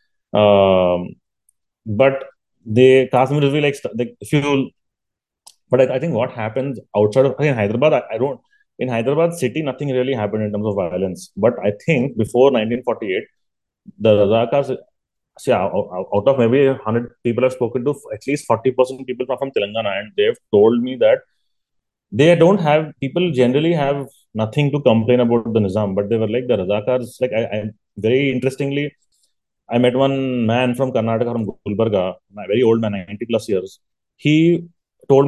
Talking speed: 175 wpm